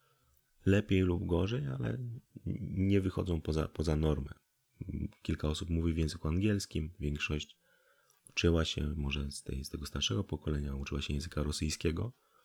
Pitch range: 75-90 Hz